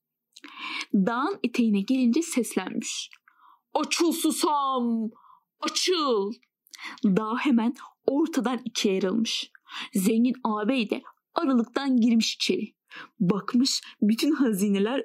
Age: 10-29